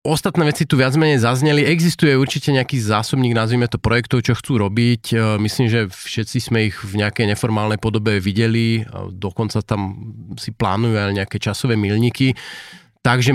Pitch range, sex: 105-125 Hz, male